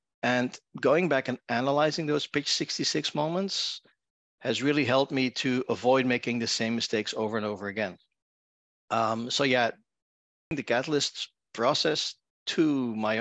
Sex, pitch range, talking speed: male, 115-135 Hz, 140 wpm